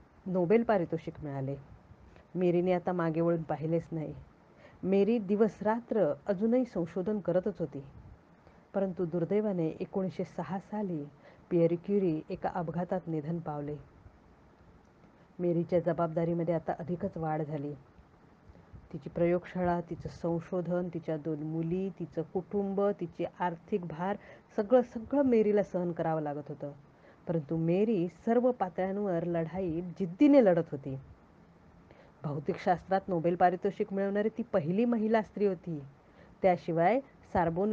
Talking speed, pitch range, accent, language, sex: 110 wpm, 165-205 Hz, native, Marathi, female